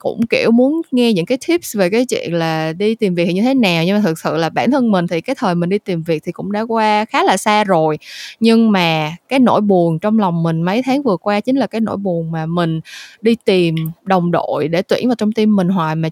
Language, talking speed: Vietnamese, 265 wpm